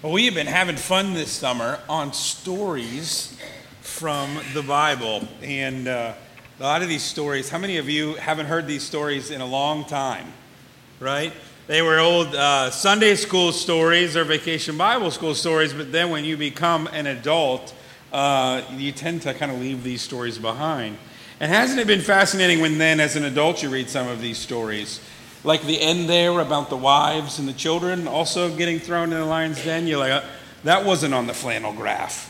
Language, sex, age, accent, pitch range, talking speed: English, male, 40-59, American, 130-165 Hz, 190 wpm